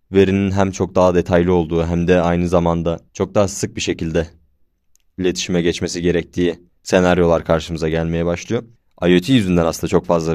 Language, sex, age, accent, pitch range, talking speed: Turkish, male, 20-39, native, 85-100 Hz, 155 wpm